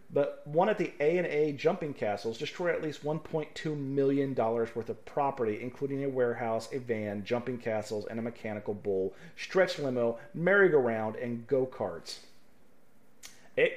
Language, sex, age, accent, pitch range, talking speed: English, male, 40-59, American, 110-145 Hz, 140 wpm